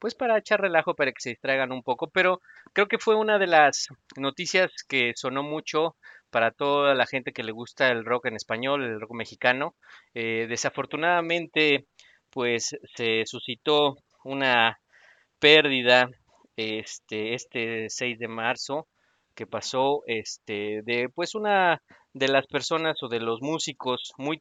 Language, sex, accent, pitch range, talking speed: Spanish, male, Mexican, 115-155 Hz, 150 wpm